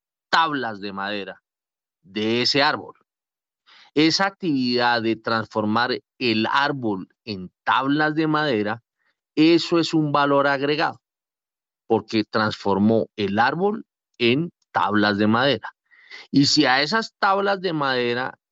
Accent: Colombian